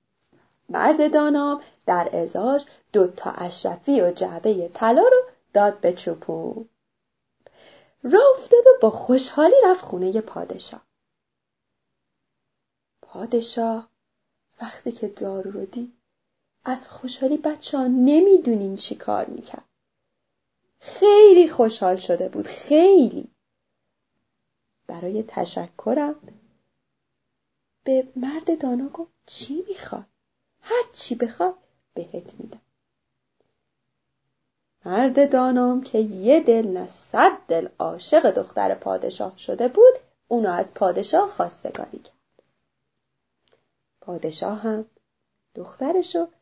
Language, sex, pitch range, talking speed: Persian, female, 190-315 Hz, 95 wpm